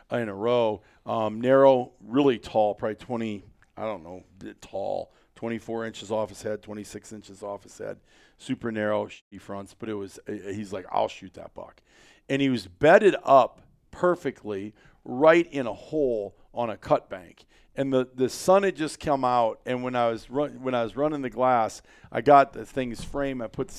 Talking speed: 185 wpm